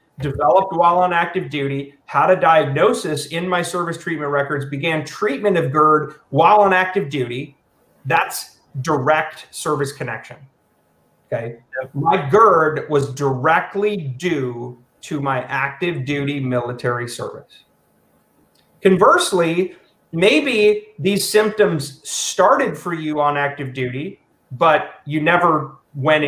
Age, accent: 30-49, American